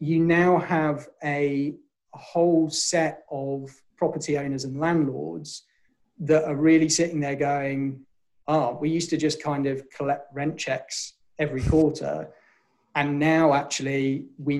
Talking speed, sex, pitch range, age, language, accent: 145 wpm, male, 135-155 Hz, 30-49, English, British